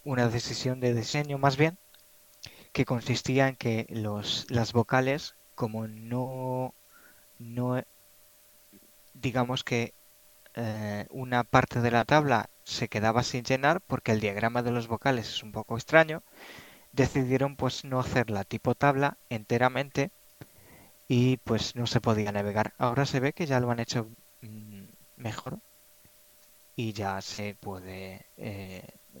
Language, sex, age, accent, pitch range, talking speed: Spanish, male, 20-39, Spanish, 110-135 Hz, 135 wpm